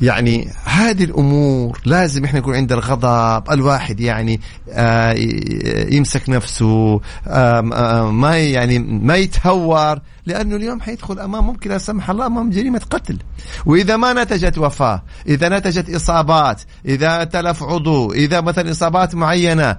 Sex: male